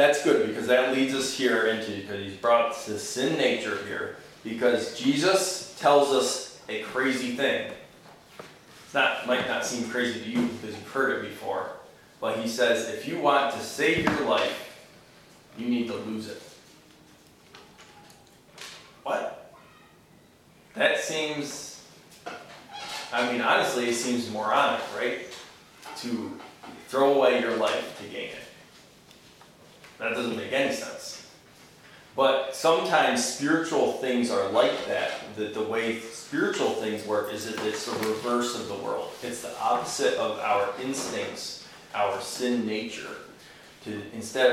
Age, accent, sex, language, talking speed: 20-39, American, male, English, 140 wpm